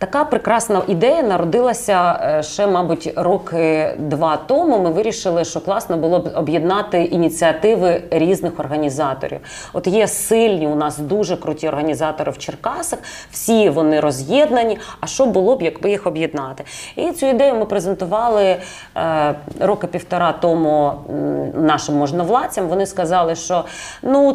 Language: Ukrainian